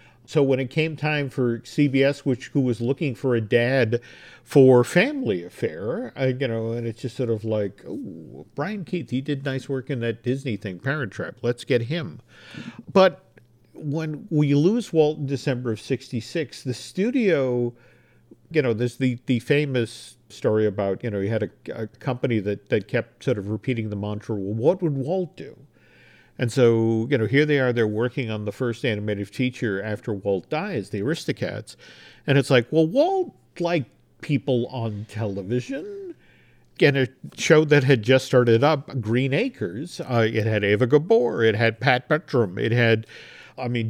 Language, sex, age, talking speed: English, male, 50-69, 180 wpm